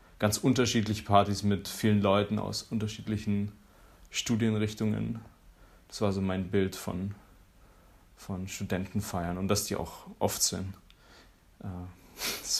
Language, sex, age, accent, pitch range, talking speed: German, male, 30-49, German, 90-105 Hz, 115 wpm